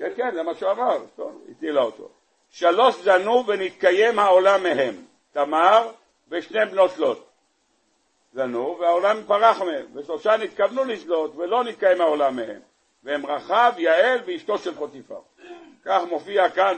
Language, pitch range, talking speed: Hebrew, 170-245 Hz, 140 wpm